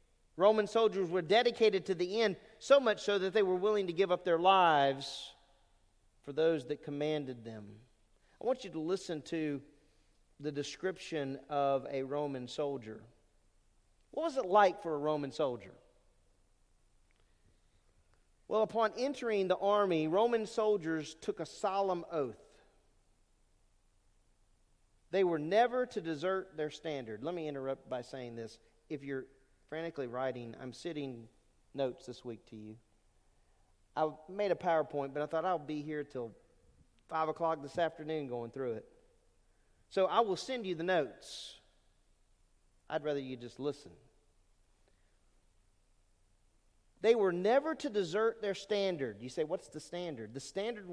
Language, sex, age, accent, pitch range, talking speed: English, male, 40-59, American, 115-190 Hz, 145 wpm